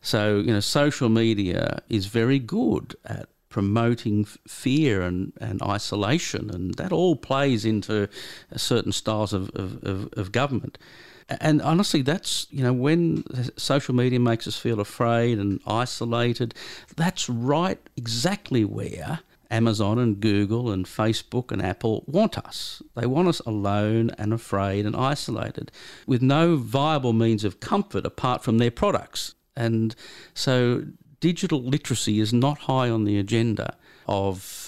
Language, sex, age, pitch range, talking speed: English, male, 50-69, 105-130 Hz, 140 wpm